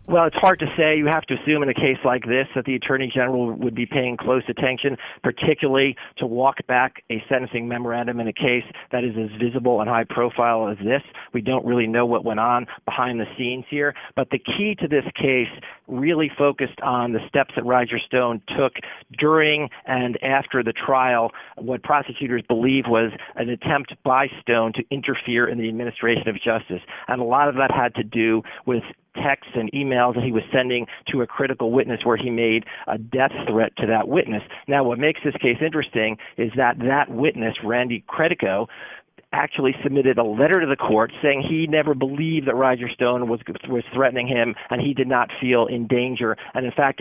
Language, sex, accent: English, male, American